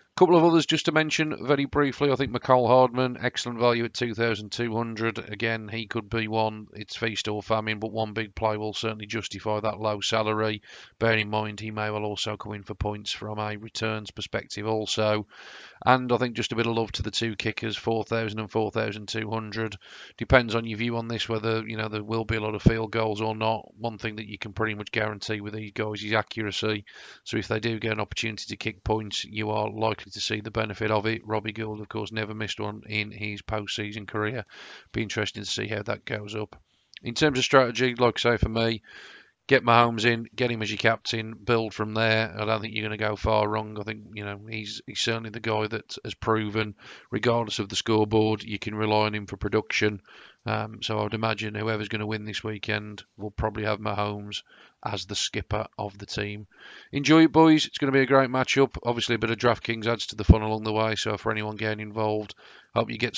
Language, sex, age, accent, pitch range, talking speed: English, male, 40-59, British, 105-115 Hz, 235 wpm